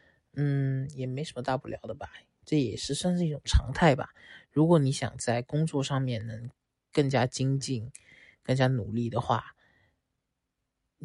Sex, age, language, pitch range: male, 20-39, Chinese, 120-150 Hz